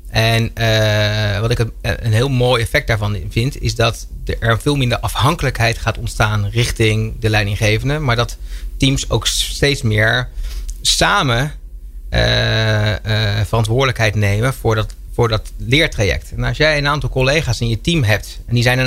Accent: Dutch